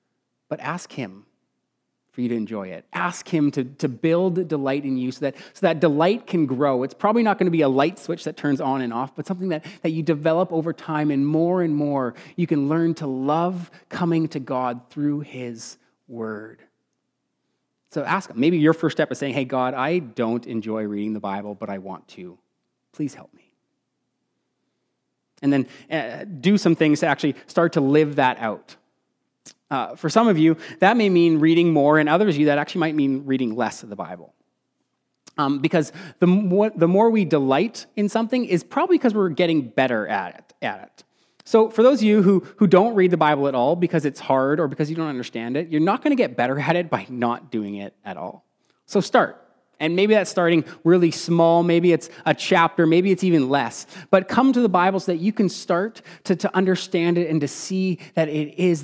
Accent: American